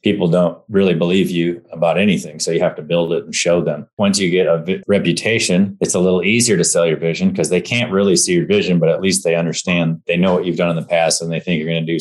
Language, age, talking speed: English, 30-49, 280 wpm